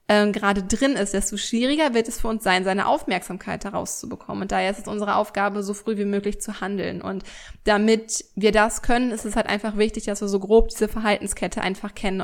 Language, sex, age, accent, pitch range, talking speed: German, female, 20-39, German, 200-230 Hz, 215 wpm